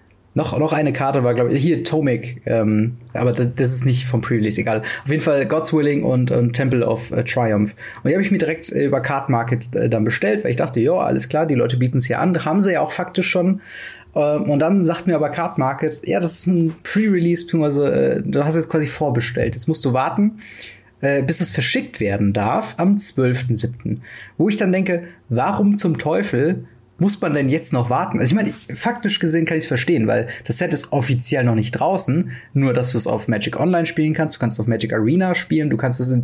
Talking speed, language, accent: 235 wpm, German, German